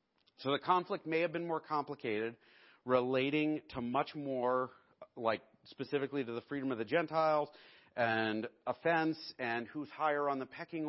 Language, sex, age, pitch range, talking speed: English, male, 40-59, 125-165 Hz, 155 wpm